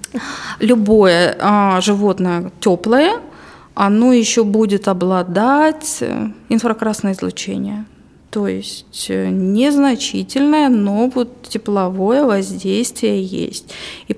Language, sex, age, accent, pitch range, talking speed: Russian, female, 20-39, native, 195-250 Hz, 70 wpm